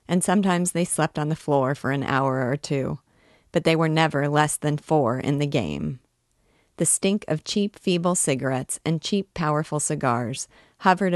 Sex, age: female, 40-59